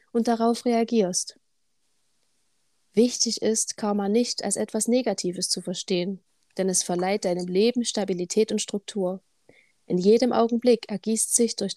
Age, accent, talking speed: 30-49, German, 135 wpm